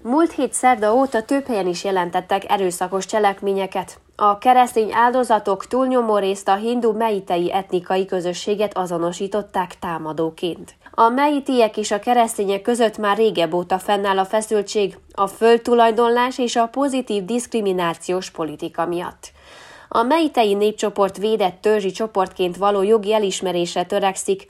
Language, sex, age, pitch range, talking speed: Hungarian, female, 20-39, 185-230 Hz, 125 wpm